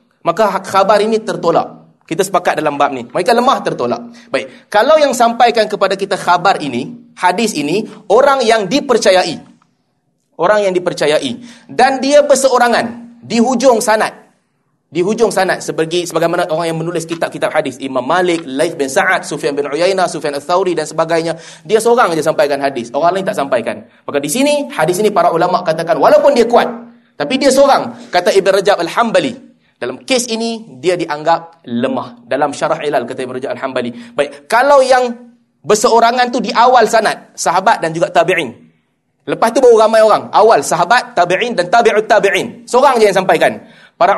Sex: male